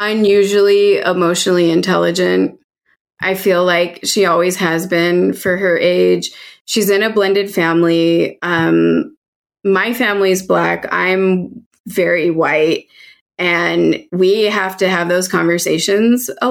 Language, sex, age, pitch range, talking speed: English, female, 20-39, 180-235 Hz, 120 wpm